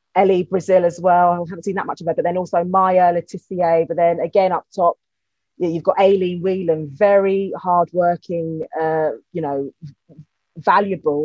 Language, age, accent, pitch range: English, 30-49, British, 160-185 Hz